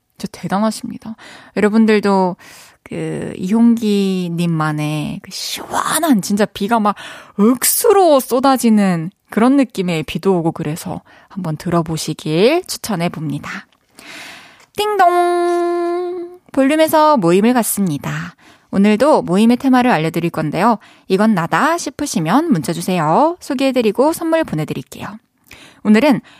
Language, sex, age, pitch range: Korean, female, 20-39, 175-270 Hz